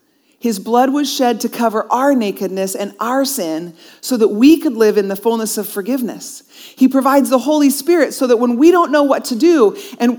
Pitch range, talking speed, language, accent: 230-295 Hz, 210 wpm, English, American